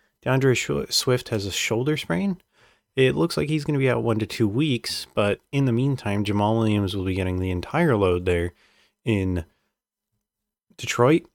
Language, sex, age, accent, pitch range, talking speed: English, male, 20-39, American, 95-125 Hz, 175 wpm